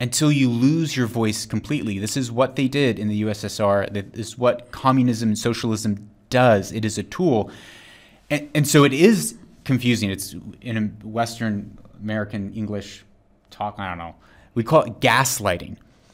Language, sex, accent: English, male, American